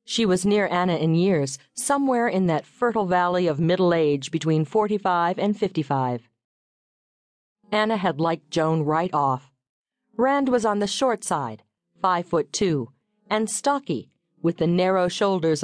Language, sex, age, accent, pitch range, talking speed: English, female, 50-69, American, 155-205 Hz, 155 wpm